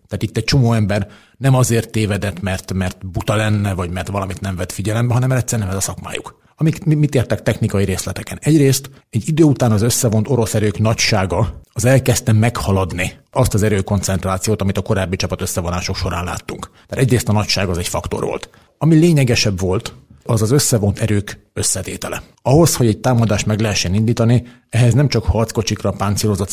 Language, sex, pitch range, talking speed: Hungarian, male, 95-115 Hz, 180 wpm